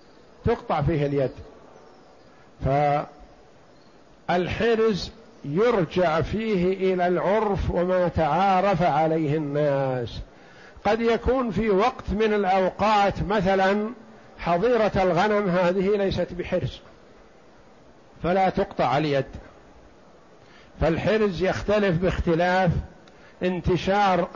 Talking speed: 75 wpm